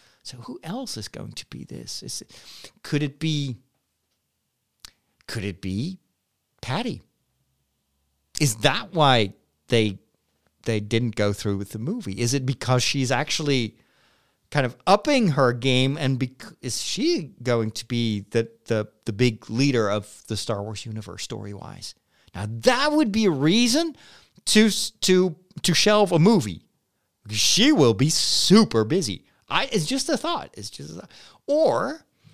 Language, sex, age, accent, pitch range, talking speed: English, male, 40-59, American, 110-180 Hz, 150 wpm